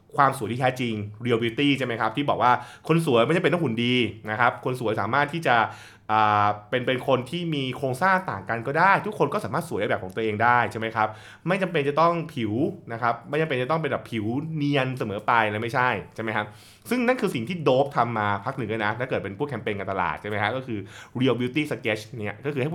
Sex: male